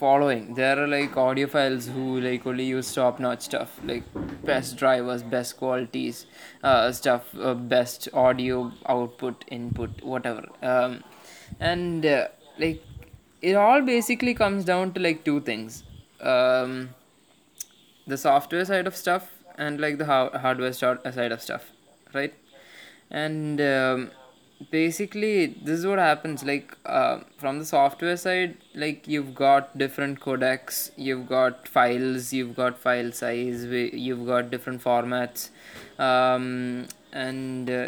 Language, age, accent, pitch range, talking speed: English, 20-39, Indian, 125-150 Hz, 135 wpm